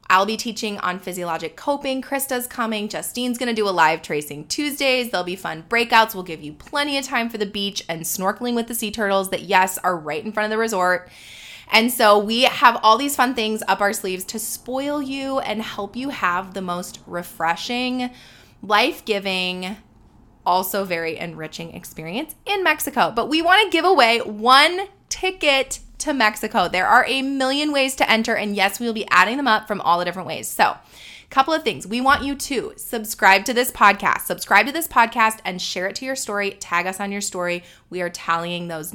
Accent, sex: American, female